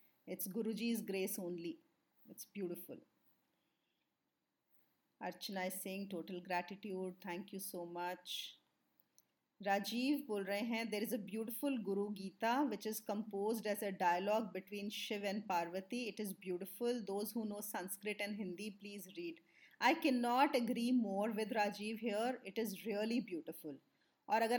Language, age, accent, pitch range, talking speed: English, 30-49, Indian, 195-245 Hz, 140 wpm